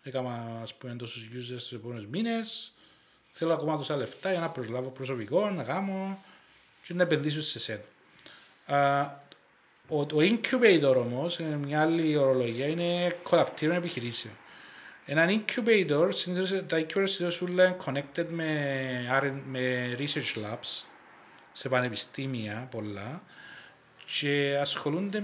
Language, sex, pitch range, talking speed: Greek, male, 130-170 Hz, 115 wpm